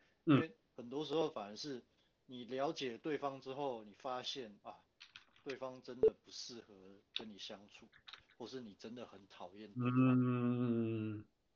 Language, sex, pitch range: Chinese, male, 115-155 Hz